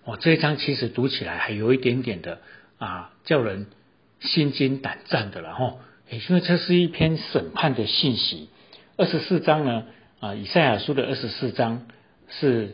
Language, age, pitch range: Chinese, 50-69, 115-160 Hz